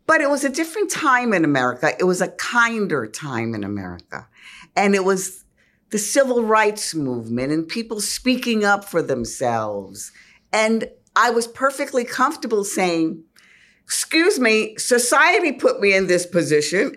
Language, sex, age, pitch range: English, female, 50-69, 140-225 Hz